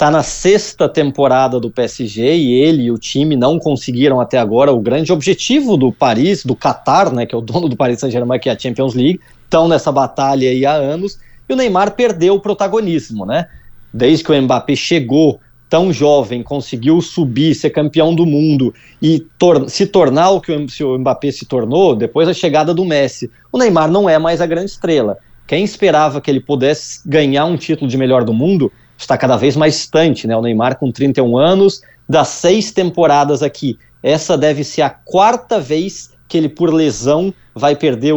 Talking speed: 195 wpm